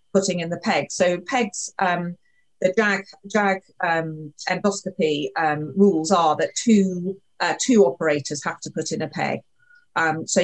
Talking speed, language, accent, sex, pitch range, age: 160 wpm, English, British, female, 165-210 Hz, 40-59